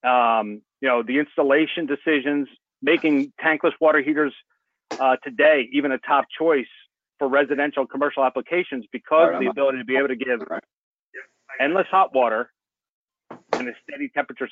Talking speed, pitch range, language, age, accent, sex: 145 wpm, 130-160 Hz, English, 40-59, American, male